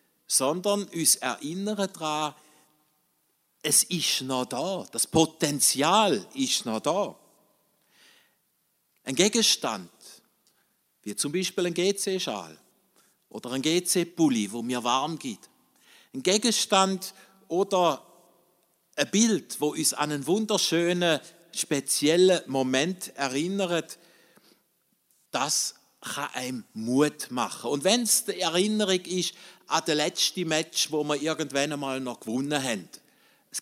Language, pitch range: German, 150-190 Hz